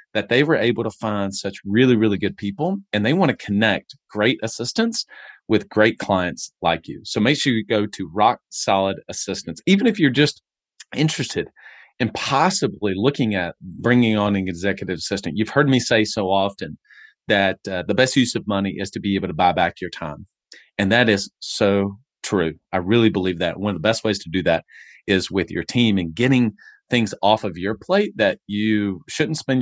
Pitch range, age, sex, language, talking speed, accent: 95-115 Hz, 30-49, male, English, 205 wpm, American